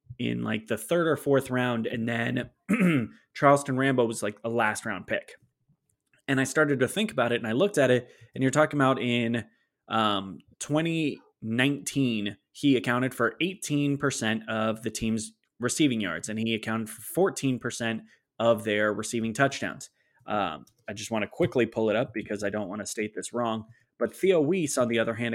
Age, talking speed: 20-39, 185 wpm